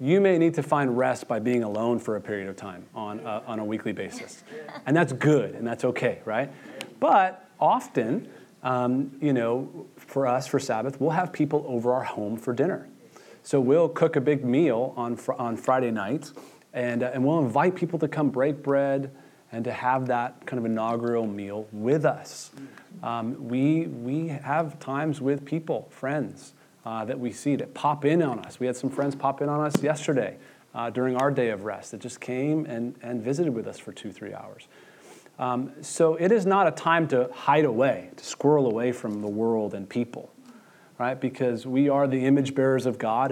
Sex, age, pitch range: male, 30-49, 120-150 Hz